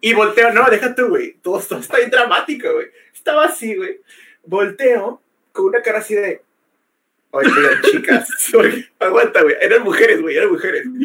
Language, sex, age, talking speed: Spanish, male, 30-49, 165 wpm